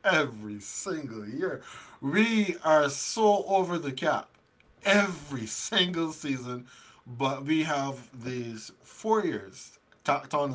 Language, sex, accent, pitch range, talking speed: English, male, American, 120-180 Hz, 115 wpm